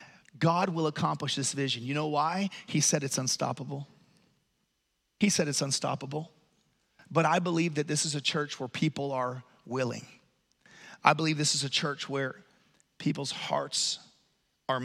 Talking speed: 155 wpm